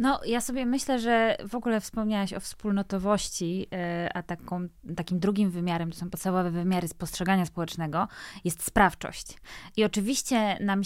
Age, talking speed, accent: 20-39, 140 wpm, native